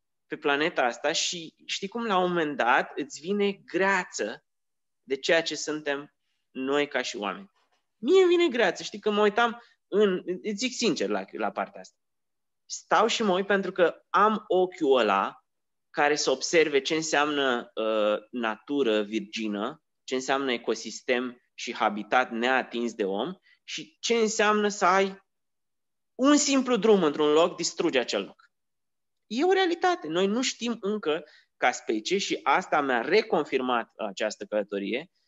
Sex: male